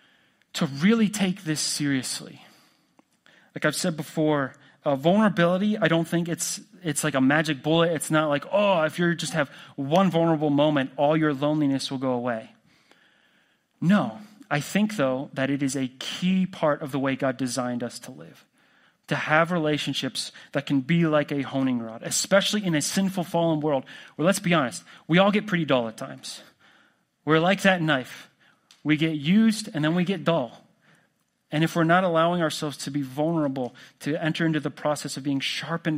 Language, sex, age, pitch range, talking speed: English, male, 30-49, 135-170 Hz, 185 wpm